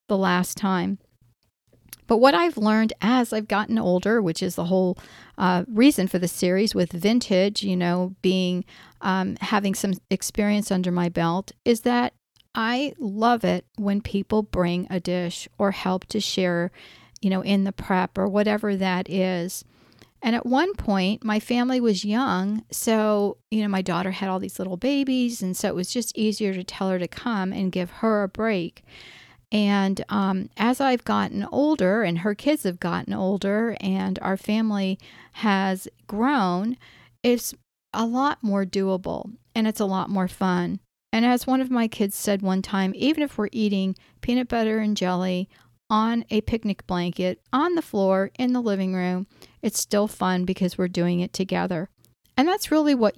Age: 40-59